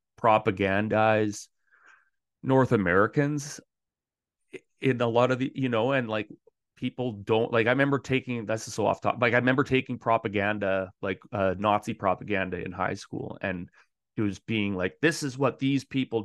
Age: 30-49